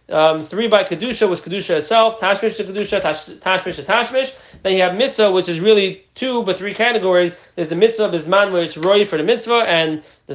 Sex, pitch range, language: male, 175-215 Hz, English